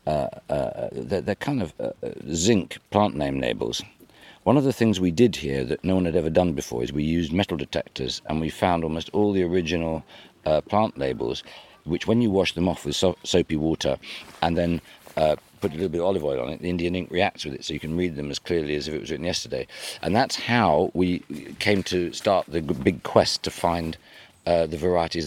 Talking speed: 225 wpm